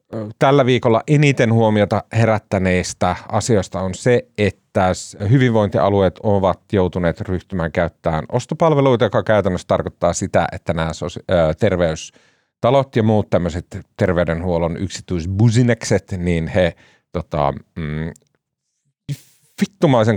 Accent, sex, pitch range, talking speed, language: native, male, 90-130 Hz, 85 wpm, Finnish